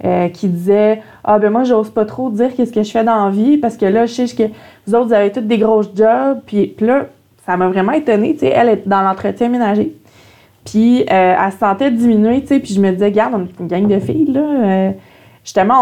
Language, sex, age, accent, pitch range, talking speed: French, female, 20-39, Canadian, 185-225 Hz, 250 wpm